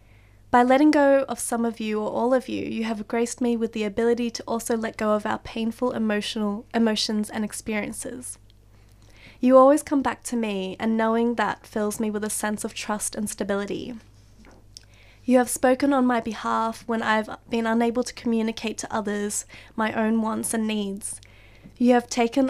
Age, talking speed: 20-39, 185 wpm